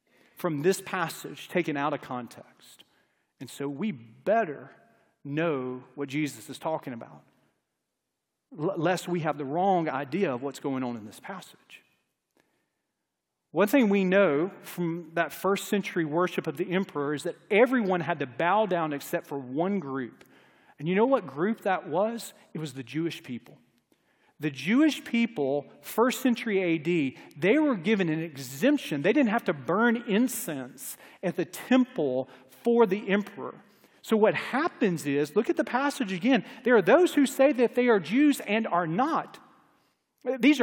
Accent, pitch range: American, 160-255 Hz